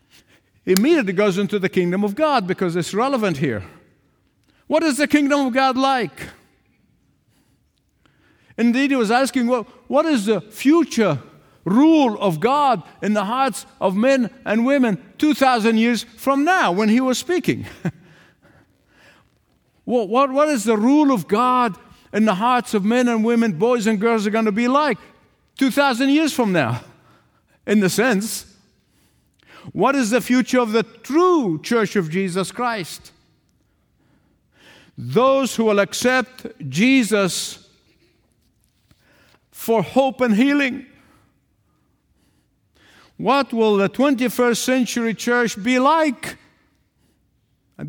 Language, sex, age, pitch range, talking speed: English, male, 50-69, 200-265 Hz, 130 wpm